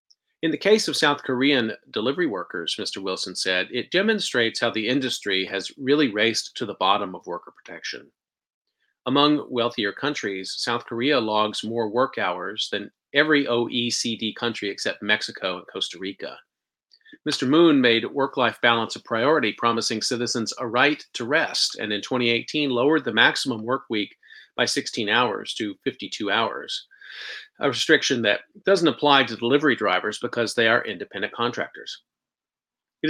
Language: English